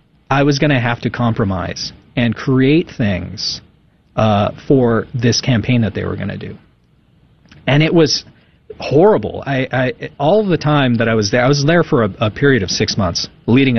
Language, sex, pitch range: English, male, 110-145 Hz